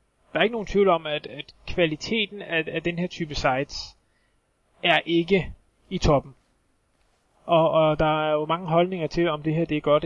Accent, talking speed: native, 195 wpm